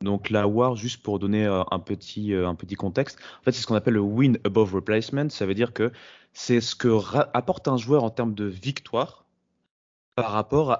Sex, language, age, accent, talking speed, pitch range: male, French, 20-39, French, 210 wpm, 100-120 Hz